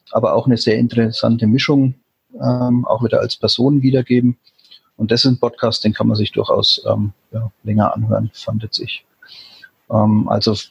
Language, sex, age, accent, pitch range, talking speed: German, male, 30-49, German, 110-125 Hz, 165 wpm